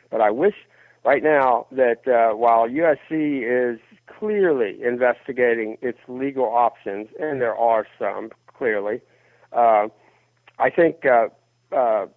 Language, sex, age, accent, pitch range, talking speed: English, male, 60-79, American, 120-150 Hz, 125 wpm